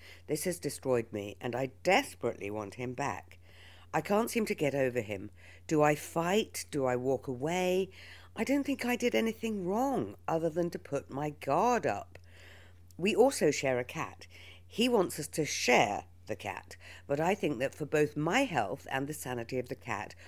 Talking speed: 190 wpm